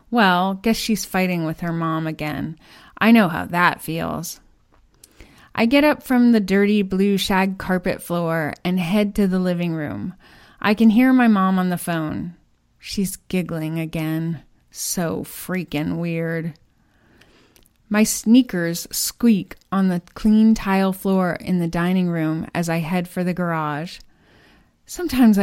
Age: 30-49